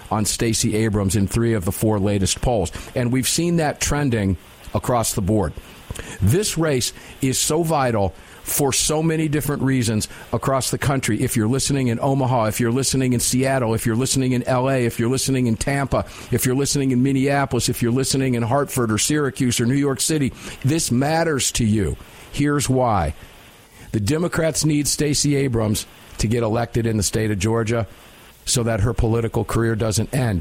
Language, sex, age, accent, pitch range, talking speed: English, male, 50-69, American, 115-145 Hz, 185 wpm